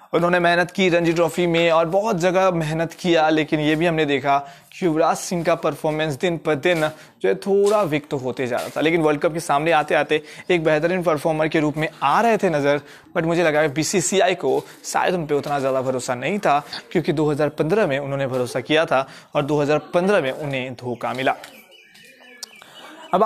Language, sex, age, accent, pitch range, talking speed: Hindi, male, 20-39, native, 150-185 Hz, 200 wpm